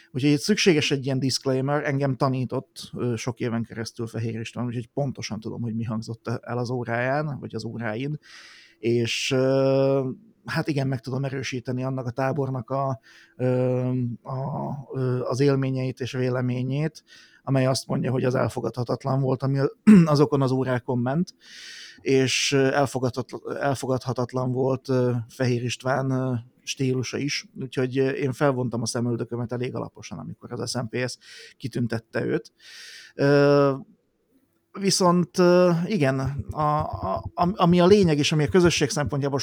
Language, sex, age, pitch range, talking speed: Hungarian, male, 30-49, 125-140 Hz, 125 wpm